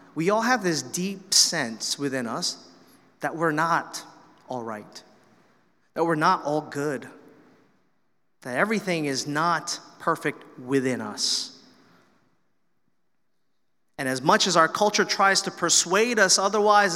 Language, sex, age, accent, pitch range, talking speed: English, male, 30-49, American, 160-220 Hz, 125 wpm